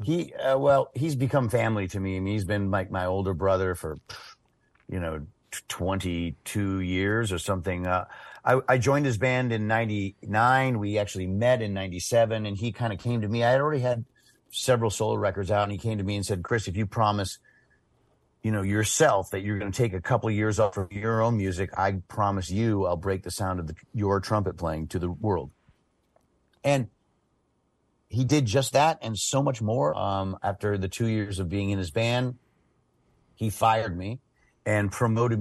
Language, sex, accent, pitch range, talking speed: English, male, American, 95-120 Hz, 195 wpm